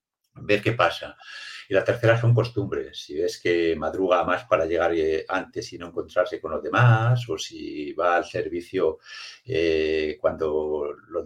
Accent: Spanish